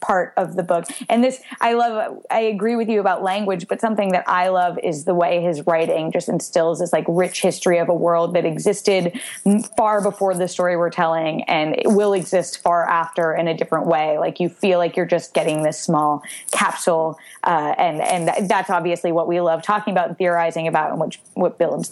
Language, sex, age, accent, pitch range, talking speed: English, female, 20-39, American, 175-220 Hz, 215 wpm